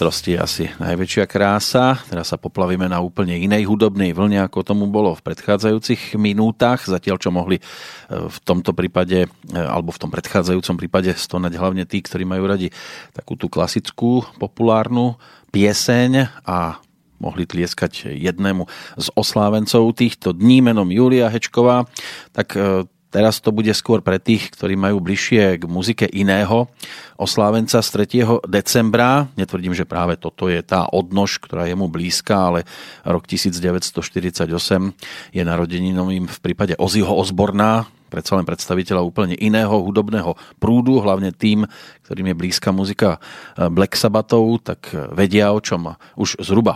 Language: Slovak